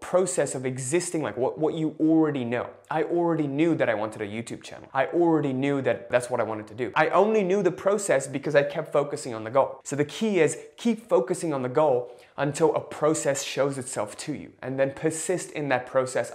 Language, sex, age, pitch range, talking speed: English, male, 20-39, 125-160 Hz, 230 wpm